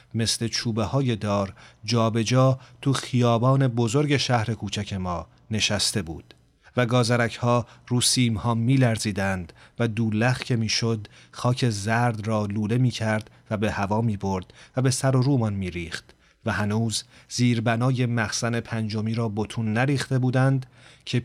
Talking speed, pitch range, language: 140 wpm, 105-125 Hz, Persian